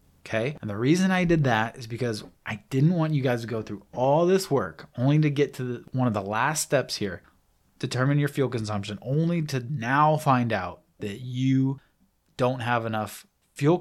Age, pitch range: 20-39, 110-145 Hz